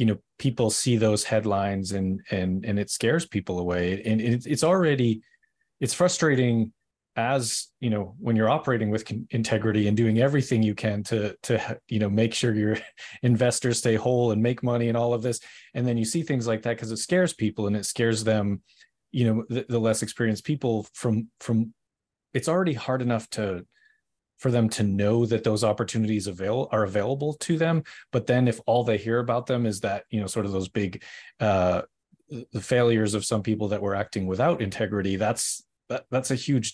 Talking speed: 200 wpm